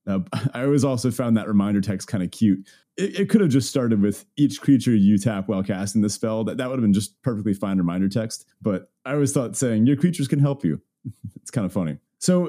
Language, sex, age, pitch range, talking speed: English, male, 30-49, 100-140 Hz, 235 wpm